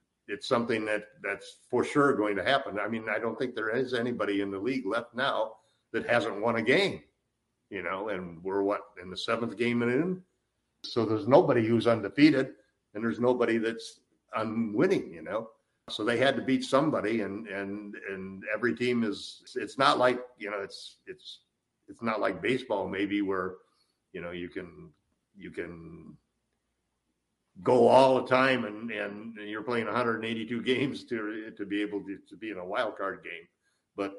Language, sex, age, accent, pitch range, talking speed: English, male, 50-69, American, 100-130 Hz, 185 wpm